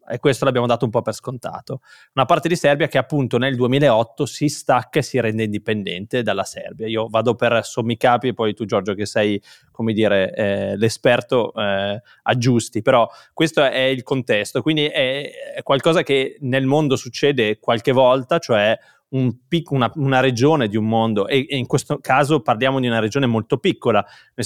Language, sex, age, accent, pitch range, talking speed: Italian, male, 20-39, native, 115-145 Hz, 185 wpm